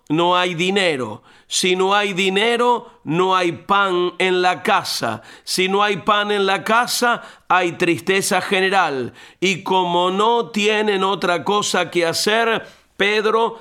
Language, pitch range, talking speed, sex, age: Spanish, 180-220 Hz, 140 wpm, male, 50-69